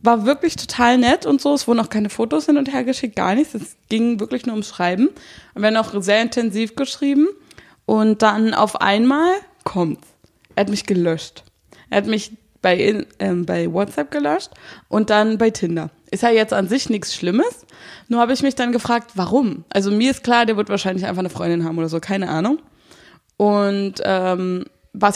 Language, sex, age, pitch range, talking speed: German, female, 20-39, 190-240 Hz, 200 wpm